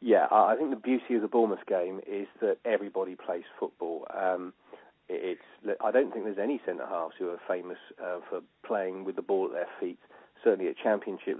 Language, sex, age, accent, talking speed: English, male, 40-59, British, 195 wpm